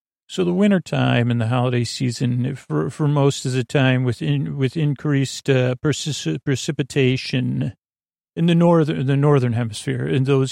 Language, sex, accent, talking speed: English, male, American, 165 wpm